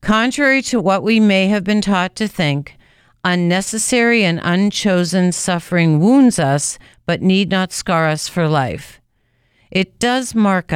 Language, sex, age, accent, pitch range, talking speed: English, female, 50-69, American, 160-205 Hz, 145 wpm